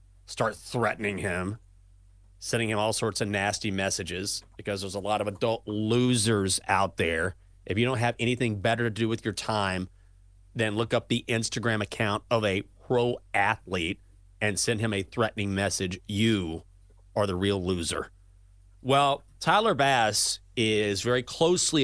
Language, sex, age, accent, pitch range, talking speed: English, male, 40-59, American, 95-145 Hz, 155 wpm